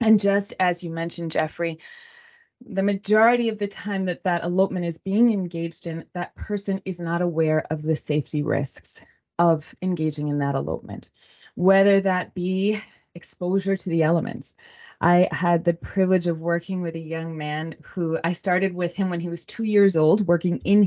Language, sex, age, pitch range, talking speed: English, female, 20-39, 165-200 Hz, 180 wpm